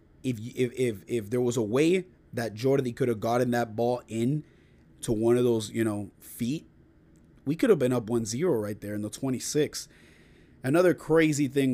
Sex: male